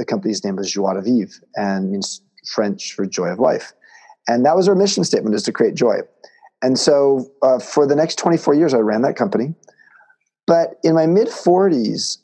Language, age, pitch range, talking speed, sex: English, 40-59, 110-150 Hz, 195 wpm, male